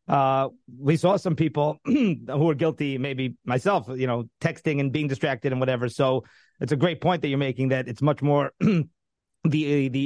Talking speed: 190 wpm